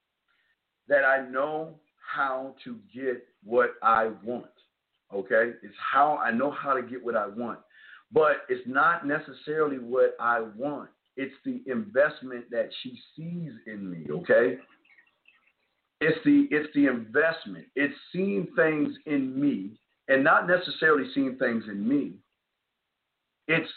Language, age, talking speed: English, 50-69, 135 wpm